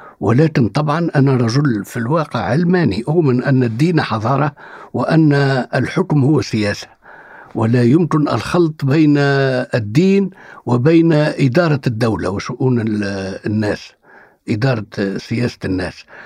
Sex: male